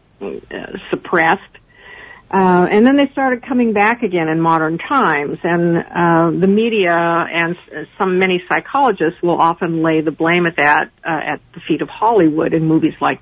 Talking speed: 170 wpm